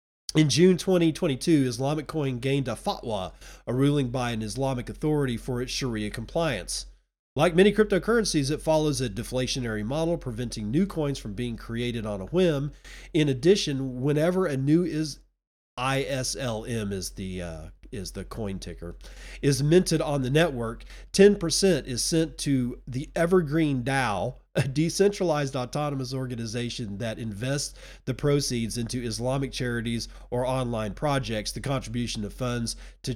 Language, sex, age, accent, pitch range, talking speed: English, male, 40-59, American, 120-165 Hz, 145 wpm